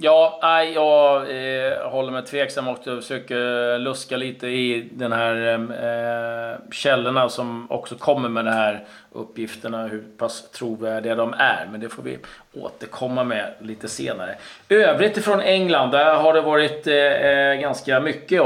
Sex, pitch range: male, 120-140 Hz